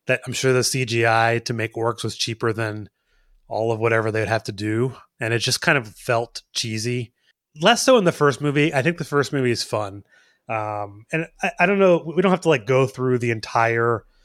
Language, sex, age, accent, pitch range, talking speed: English, male, 30-49, American, 115-145 Hz, 225 wpm